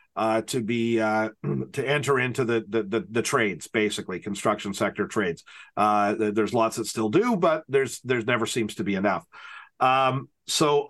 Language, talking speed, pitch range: English, 175 wpm, 110-135 Hz